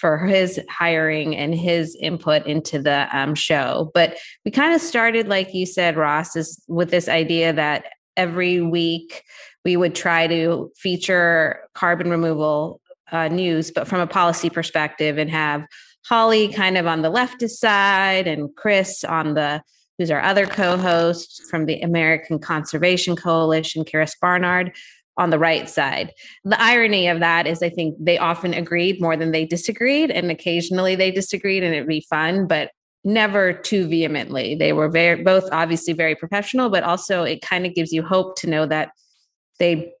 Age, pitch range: 30-49, 160-185 Hz